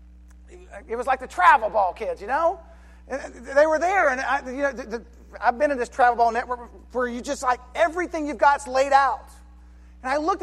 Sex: male